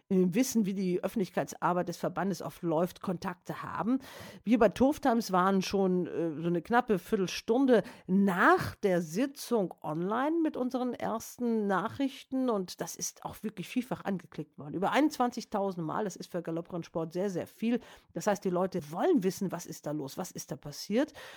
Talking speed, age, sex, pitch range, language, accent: 170 wpm, 50-69, female, 175-240 Hz, German, German